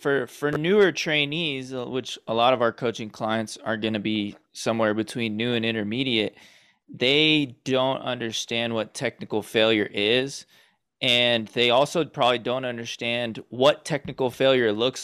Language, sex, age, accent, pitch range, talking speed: English, male, 20-39, American, 110-135 Hz, 150 wpm